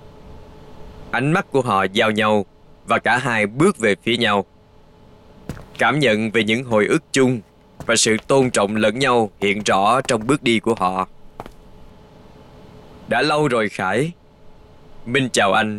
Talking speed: 150 wpm